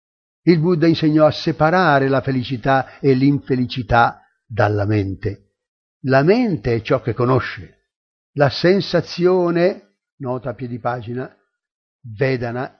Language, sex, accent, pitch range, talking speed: Italian, male, native, 125-170 Hz, 115 wpm